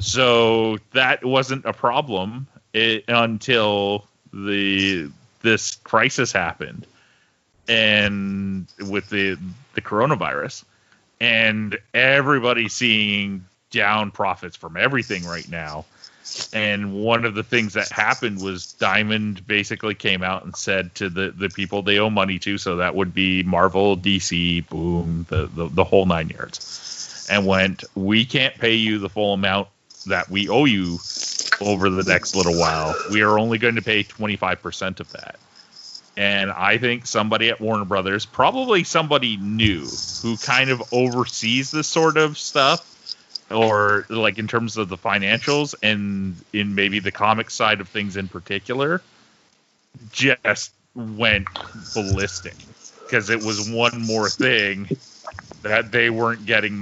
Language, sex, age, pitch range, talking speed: English, male, 30-49, 95-115 Hz, 140 wpm